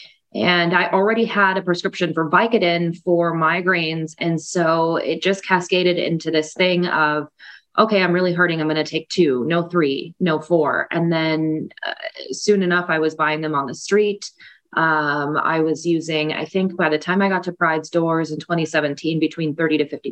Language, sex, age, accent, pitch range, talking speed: English, female, 20-39, American, 155-175 Hz, 190 wpm